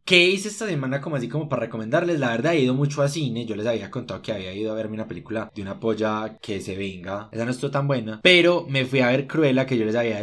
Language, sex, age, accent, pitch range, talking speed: Spanish, male, 20-39, Colombian, 110-140 Hz, 280 wpm